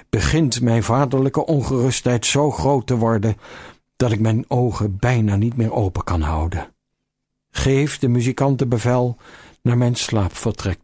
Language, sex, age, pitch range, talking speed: Dutch, male, 60-79, 100-125 Hz, 140 wpm